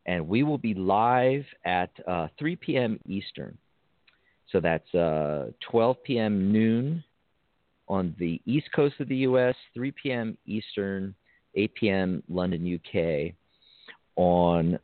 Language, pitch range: English, 95-130 Hz